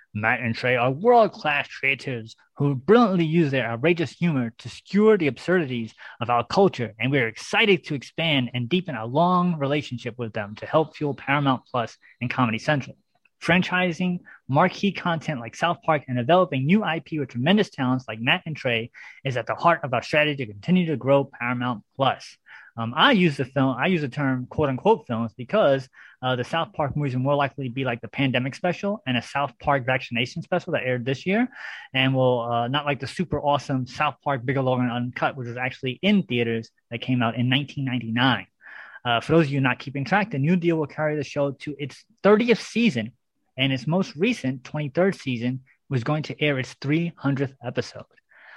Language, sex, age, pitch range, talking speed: English, male, 20-39, 125-170 Hz, 200 wpm